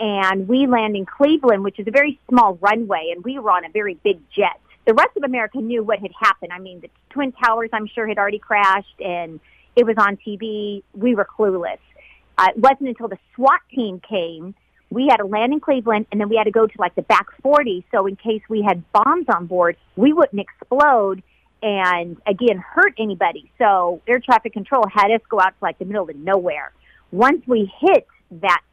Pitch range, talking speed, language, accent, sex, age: 195-245 Hz, 215 wpm, English, American, female, 40-59